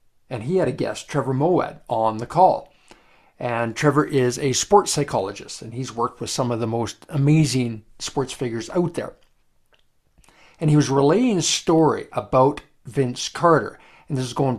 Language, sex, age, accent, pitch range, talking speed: English, male, 50-69, American, 130-165 Hz, 175 wpm